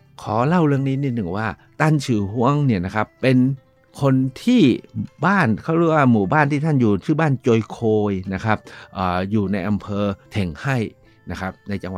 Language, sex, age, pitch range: Thai, male, 60-79, 100-130 Hz